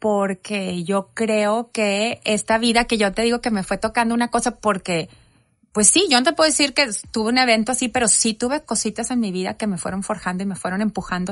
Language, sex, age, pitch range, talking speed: Spanish, female, 30-49, 185-235 Hz, 235 wpm